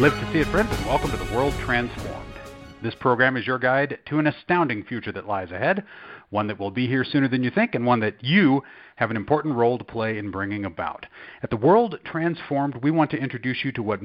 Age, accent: 40-59, American